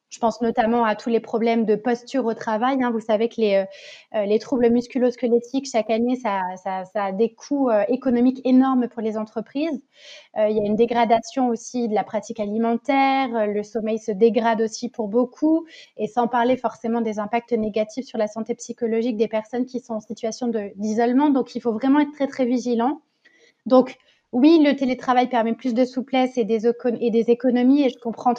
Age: 20-39